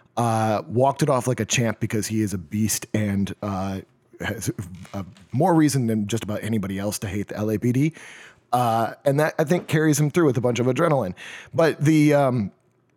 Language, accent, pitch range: English, American, 110-140 Hz